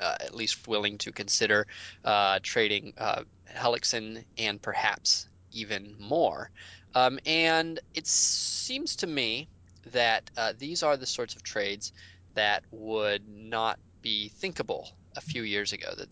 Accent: American